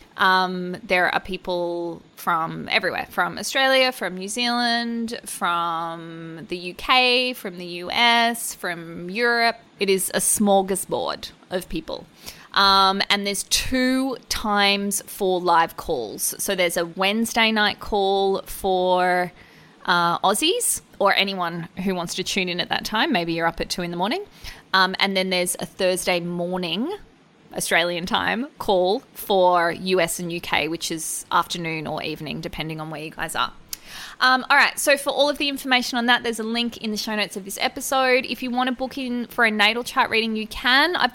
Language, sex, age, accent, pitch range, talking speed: English, female, 20-39, Australian, 180-240 Hz, 175 wpm